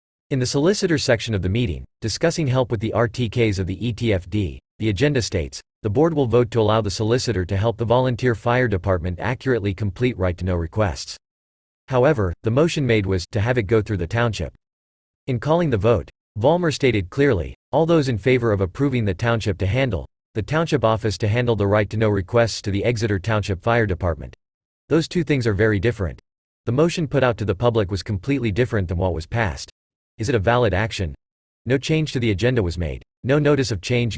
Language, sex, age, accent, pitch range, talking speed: English, male, 40-59, American, 100-125 Hz, 200 wpm